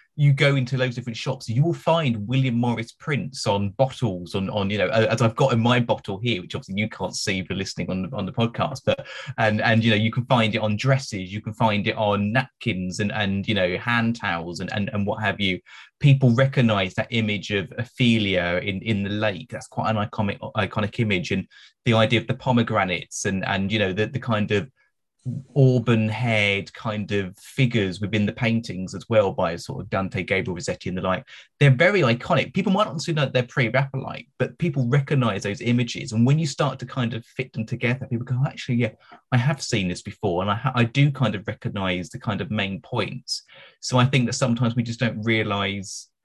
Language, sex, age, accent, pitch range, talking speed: English, male, 30-49, British, 105-130 Hz, 225 wpm